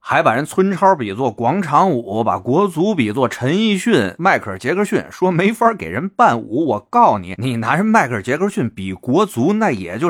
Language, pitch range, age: Chinese, 95-145 Hz, 30-49